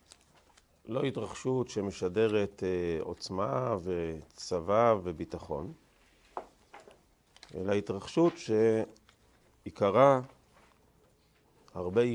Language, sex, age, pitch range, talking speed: Hebrew, male, 50-69, 95-125 Hz, 50 wpm